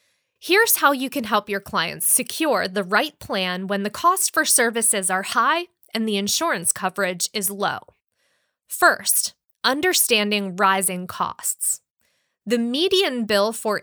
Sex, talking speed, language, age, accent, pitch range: female, 140 wpm, English, 20-39, American, 200-275 Hz